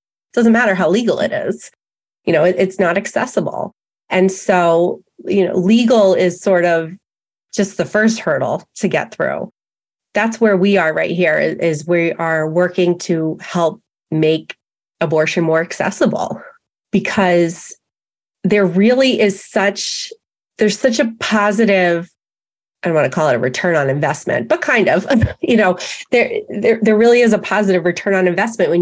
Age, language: 30-49, English